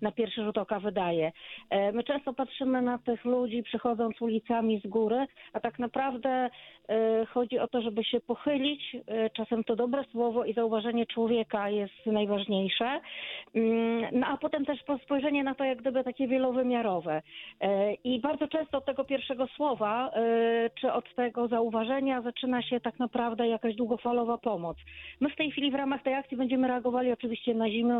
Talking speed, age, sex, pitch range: 160 wpm, 40-59, female, 220-250 Hz